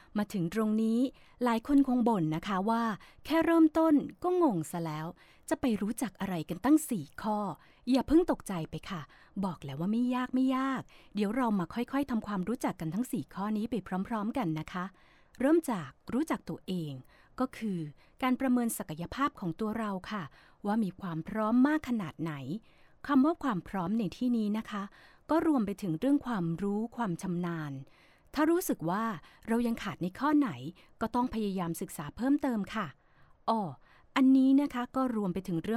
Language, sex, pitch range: Thai, female, 180-255 Hz